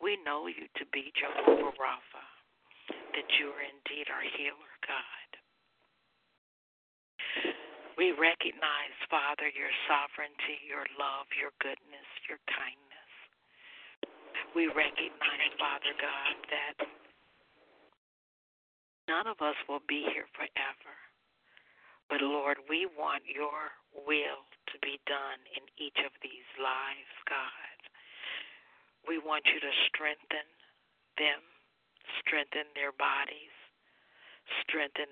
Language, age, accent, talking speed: English, 60-79, American, 105 wpm